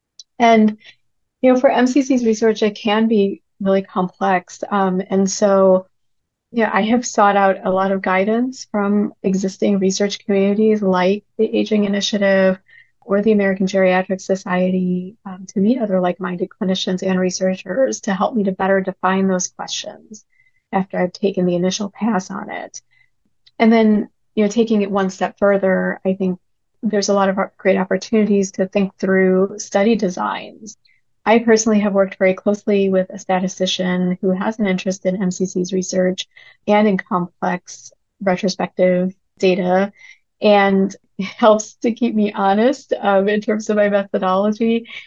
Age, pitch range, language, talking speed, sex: 30-49, 185-210 Hz, English, 155 wpm, female